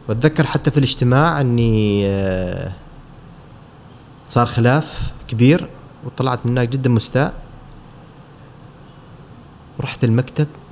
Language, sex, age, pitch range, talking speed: Arabic, male, 30-49, 115-145 Hz, 80 wpm